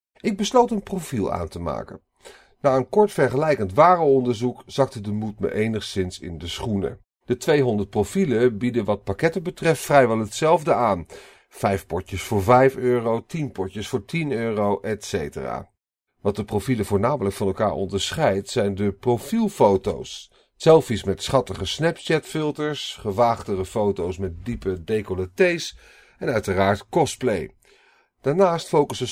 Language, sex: Dutch, male